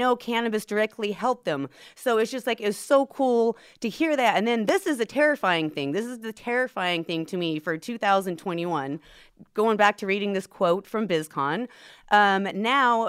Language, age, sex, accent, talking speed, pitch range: English, 30-49, female, American, 190 wpm, 180-230 Hz